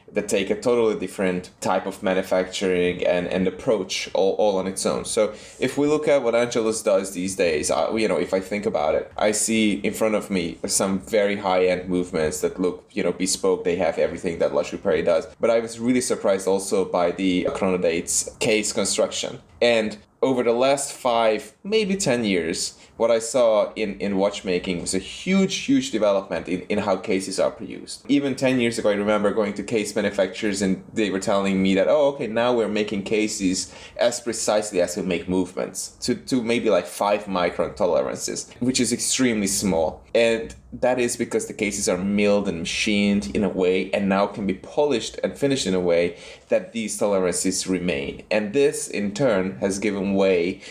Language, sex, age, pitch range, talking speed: English, male, 20-39, 95-115 Hz, 195 wpm